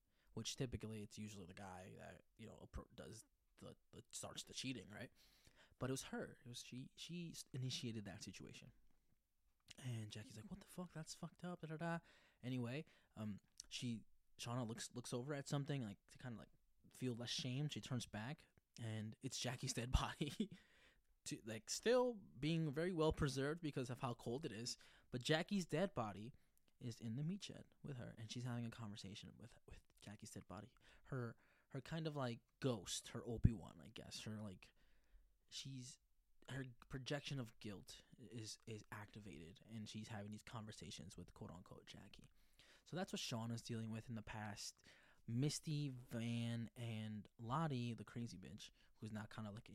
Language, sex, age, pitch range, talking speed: English, male, 20-39, 110-150 Hz, 180 wpm